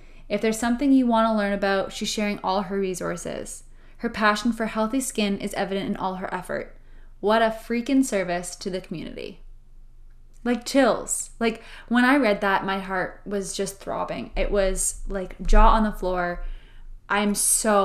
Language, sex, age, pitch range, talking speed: English, female, 10-29, 195-230 Hz, 175 wpm